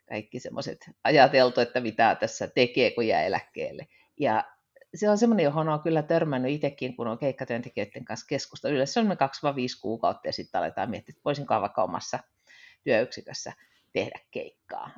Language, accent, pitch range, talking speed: Finnish, native, 140-185 Hz, 150 wpm